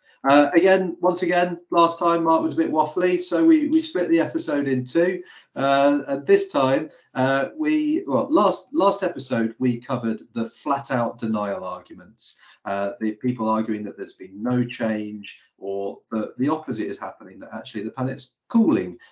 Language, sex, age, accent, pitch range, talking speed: English, male, 40-59, British, 105-145 Hz, 175 wpm